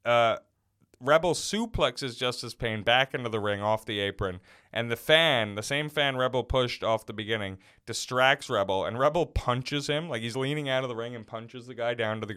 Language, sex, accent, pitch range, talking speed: English, male, American, 115-155 Hz, 210 wpm